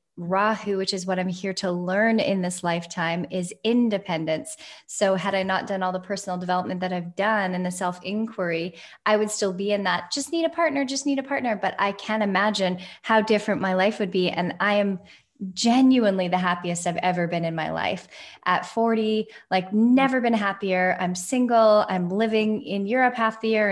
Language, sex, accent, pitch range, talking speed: English, female, American, 185-225 Hz, 200 wpm